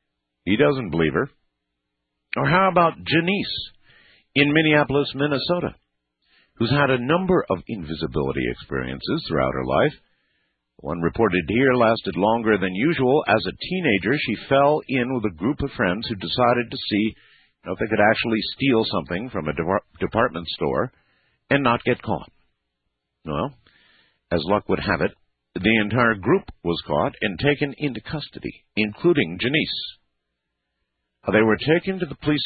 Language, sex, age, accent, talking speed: English, male, 50-69, American, 150 wpm